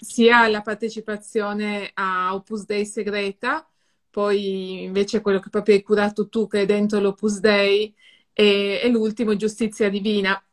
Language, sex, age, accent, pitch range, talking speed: Italian, female, 30-49, native, 205-230 Hz, 140 wpm